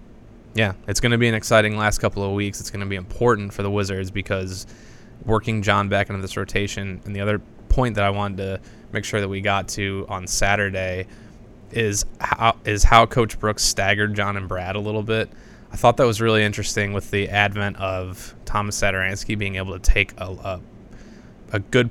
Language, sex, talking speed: English, male, 205 wpm